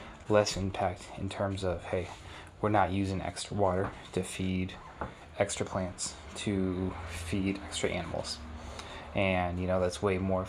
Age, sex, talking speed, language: 20-39, male, 145 wpm, English